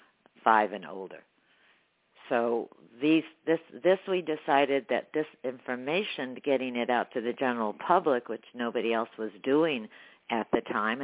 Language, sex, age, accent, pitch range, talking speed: English, female, 60-79, American, 125-165 Hz, 145 wpm